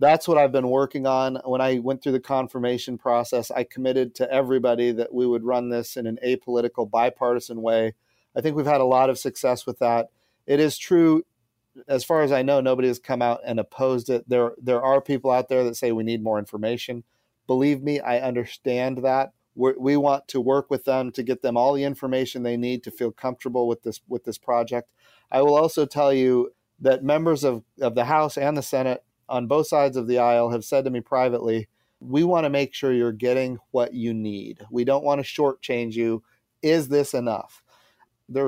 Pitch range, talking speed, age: 120-135 Hz, 215 wpm, 40-59